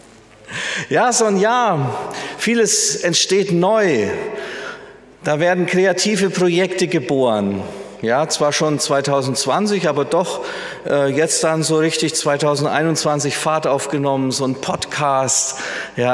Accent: German